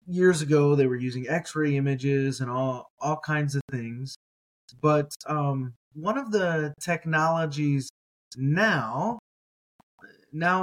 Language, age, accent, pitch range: English, 20-39, American, 130-155 Hz